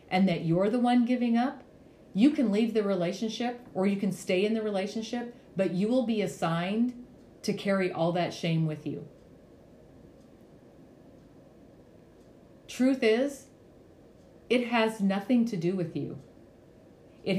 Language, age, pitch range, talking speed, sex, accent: English, 40-59, 170-220 Hz, 140 wpm, female, American